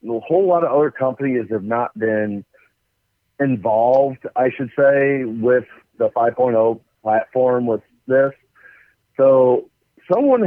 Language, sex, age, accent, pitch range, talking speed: English, male, 40-59, American, 120-150 Hz, 120 wpm